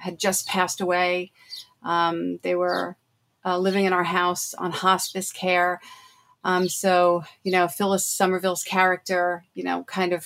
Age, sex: 40-59, female